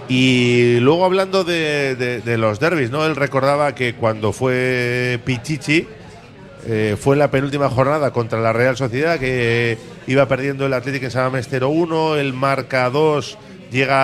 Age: 40-59